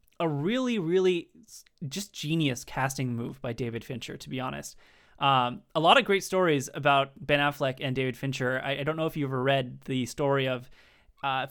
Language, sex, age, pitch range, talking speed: English, male, 20-39, 125-150 Hz, 195 wpm